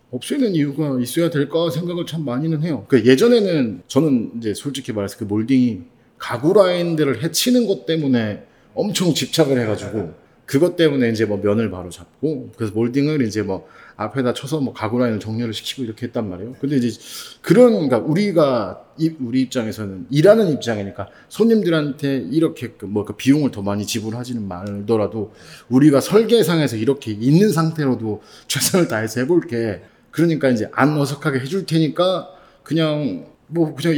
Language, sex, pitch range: Korean, male, 115-165 Hz